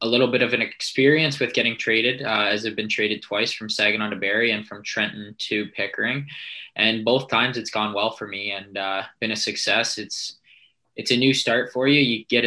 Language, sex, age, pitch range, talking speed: English, male, 20-39, 105-115 Hz, 220 wpm